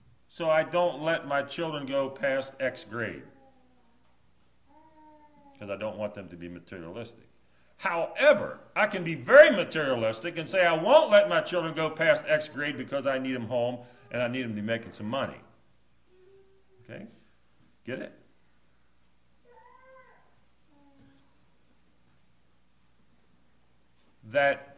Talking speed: 130 wpm